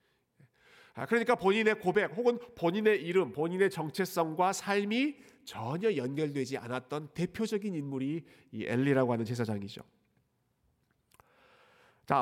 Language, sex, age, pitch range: Korean, male, 40-59, 135-200 Hz